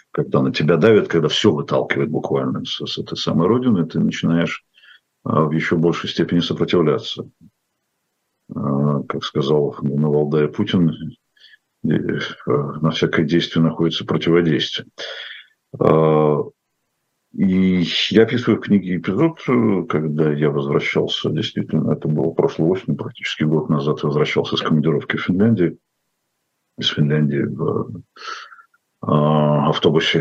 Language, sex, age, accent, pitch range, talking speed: Russian, male, 50-69, native, 75-90 Hz, 120 wpm